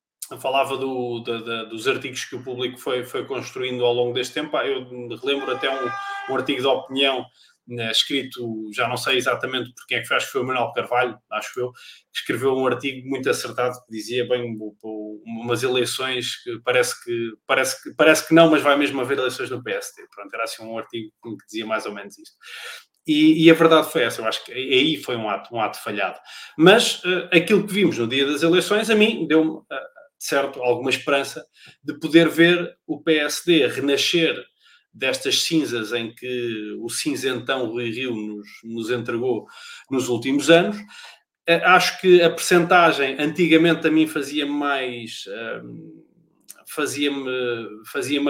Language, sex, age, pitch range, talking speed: Portuguese, male, 20-39, 120-170 Hz, 180 wpm